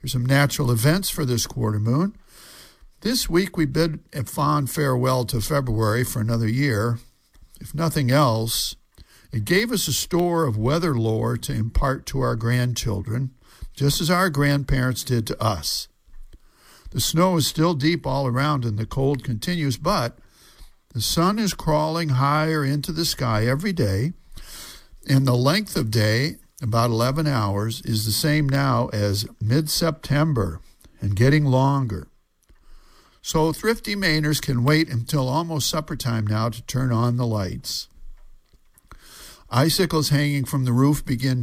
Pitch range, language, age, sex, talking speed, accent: 115-155 Hz, English, 60-79, male, 150 wpm, American